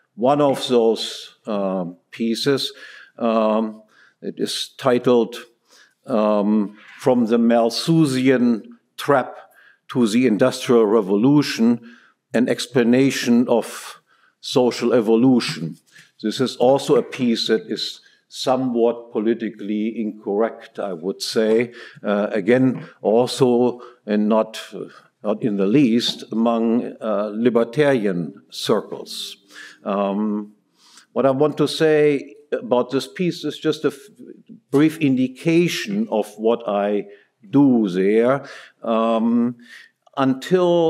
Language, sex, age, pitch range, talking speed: English, male, 50-69, 105-135 Hz, 105 wpm